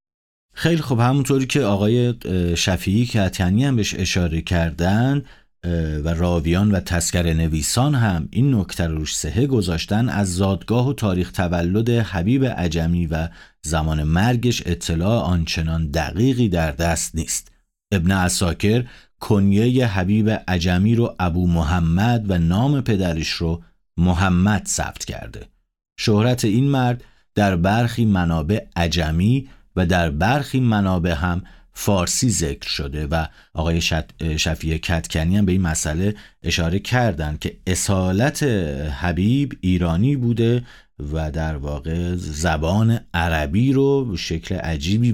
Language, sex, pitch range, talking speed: Persian, male, 85-110 Hz, 125 wpm